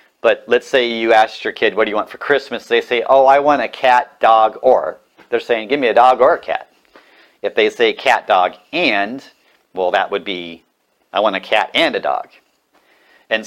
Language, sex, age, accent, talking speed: English, male, 40-59, American, 220 wpm